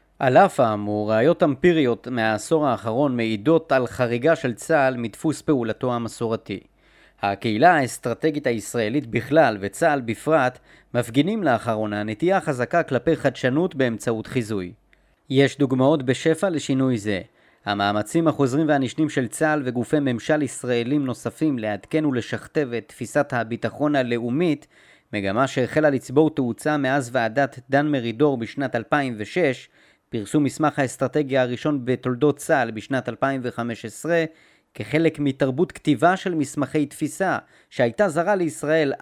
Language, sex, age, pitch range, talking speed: Hebrew, male, 30-49, 120-150 Hz, 115 wpm